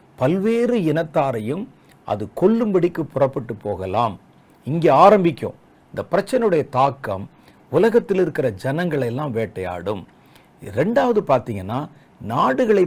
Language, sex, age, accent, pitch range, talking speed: Tamil, male, 50-69, native, 125-200 Hz, 85 wpm